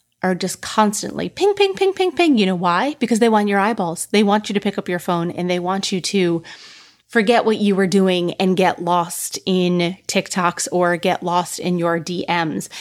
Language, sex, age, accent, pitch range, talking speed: English, female, 30-49, American, 175-205 Hz, 210 wpm